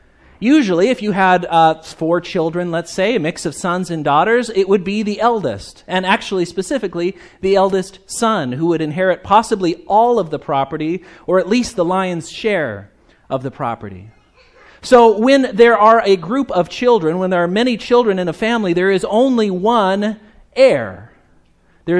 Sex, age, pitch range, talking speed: male, 40-59, 160-215 Hz, 175 wpm